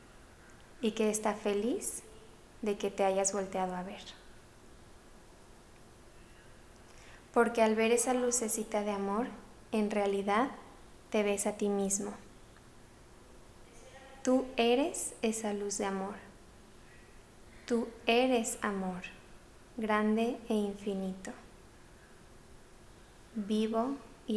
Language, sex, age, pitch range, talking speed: Spanish, female, 20-39, 195-235 Hz, 95 wpm